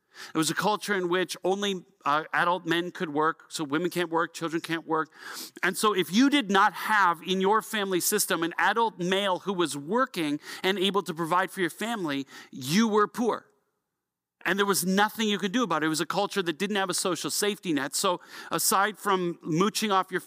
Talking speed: 215 wpm